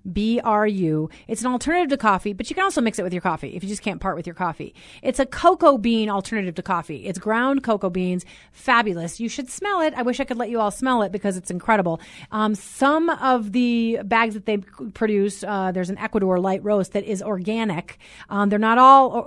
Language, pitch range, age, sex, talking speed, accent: English, 195-250 Hz, 30-49, female, 230 wpm, American